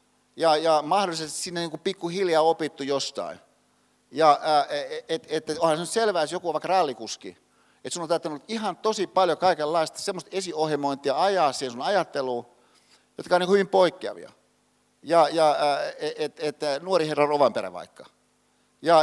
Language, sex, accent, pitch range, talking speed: Finnish, male, native, 140-175 Hz, 155 wpm